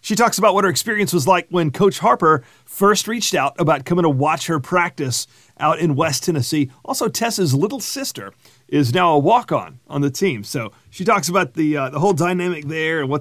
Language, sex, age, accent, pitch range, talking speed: English, male, 40-59, American, 145-195 Hz, 215 wpm